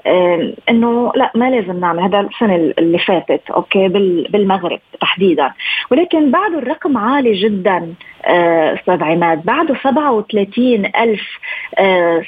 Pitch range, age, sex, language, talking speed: 200-250 Hz, 20-39, female, Arabic, 105 wpm